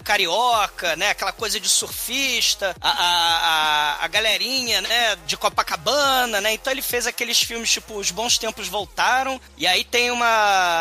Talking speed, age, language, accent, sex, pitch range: 160 wpm, 20-39, Portuguese, Brazilian, male, 180-235 Hz